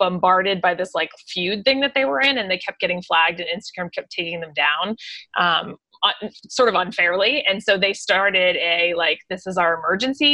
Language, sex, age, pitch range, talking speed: English, female, 20-39, 175-210 Hz, 210 wpm